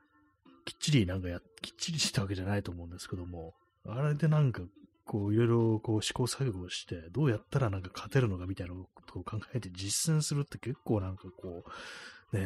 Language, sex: Japanese, male